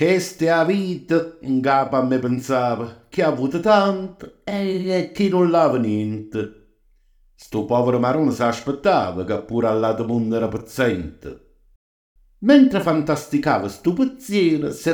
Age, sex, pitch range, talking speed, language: 60-79, male, 110-170 Hz, 135 wpm, Italian